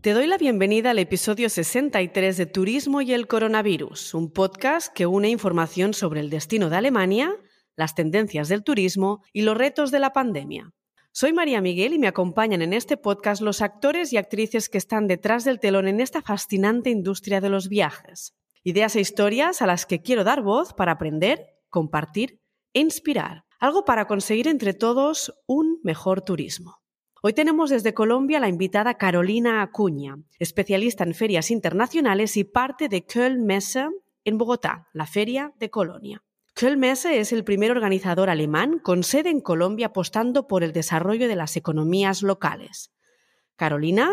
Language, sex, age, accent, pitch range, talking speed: Spanish, female, 30-49, Spanish, 185-245 Hz, 165 wpm